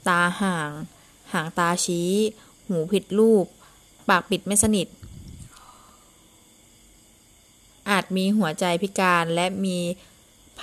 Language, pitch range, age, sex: Thai, 165-200 Hz, 20-39, female